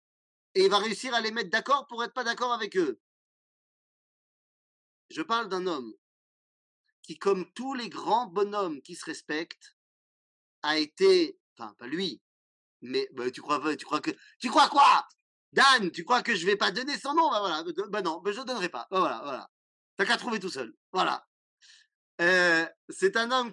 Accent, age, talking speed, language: French, 40-59, 195 wpm, French